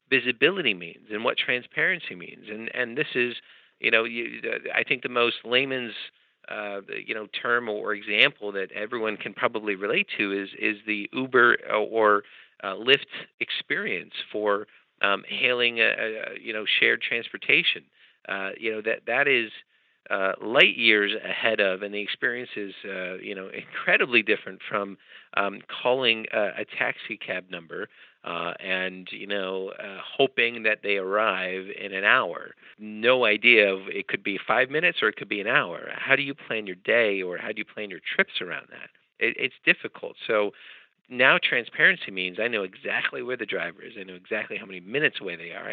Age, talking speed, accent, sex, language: 40-59, 185 wpm, American, male, English